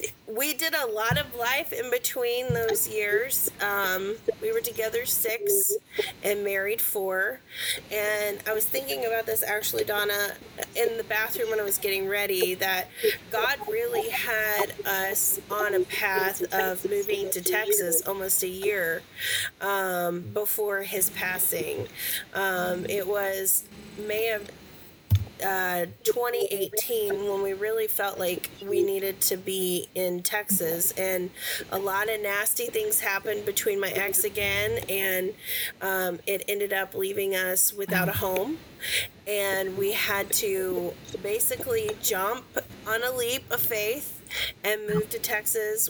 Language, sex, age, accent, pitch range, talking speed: English, female, 30-49, American, 190-230 Hz, 140 wpm